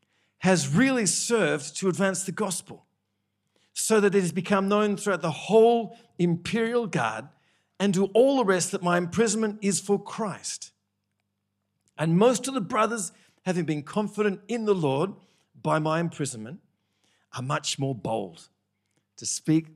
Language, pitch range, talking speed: English, 110-185 Hz, 150 wpm